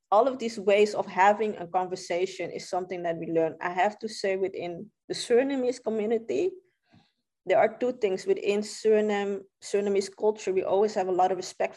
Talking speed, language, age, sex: 185 wpm, Italian, 20-39, female